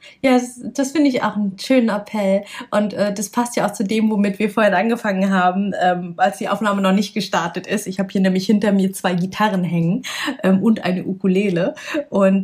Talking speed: 210 wpm